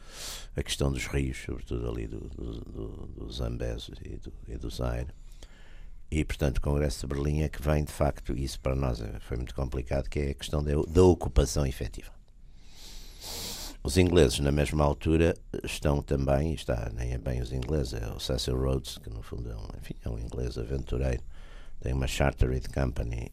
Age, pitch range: 60-79, 65-75 Hz